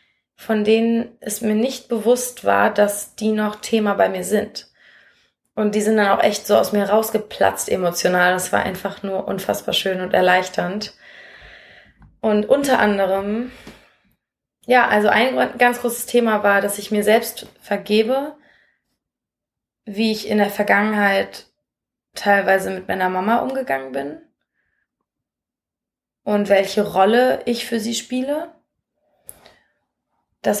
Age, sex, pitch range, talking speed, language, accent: 20-39, female, 200-240 Hz, 130 wpm, German, German